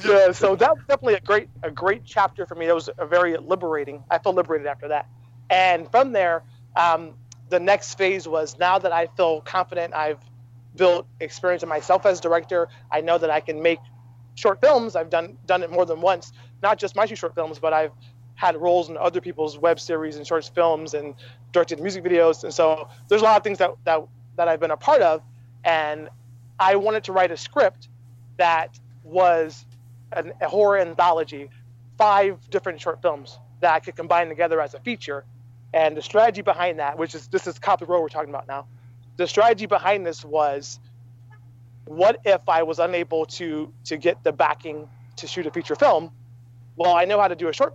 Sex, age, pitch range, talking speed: male, 30-49, 140-180 Hz, 200 wpm